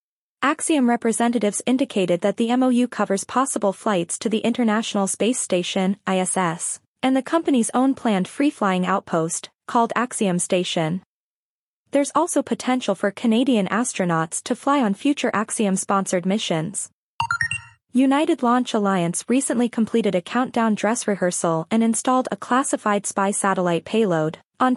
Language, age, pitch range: English, 20-39, 190-250 Hz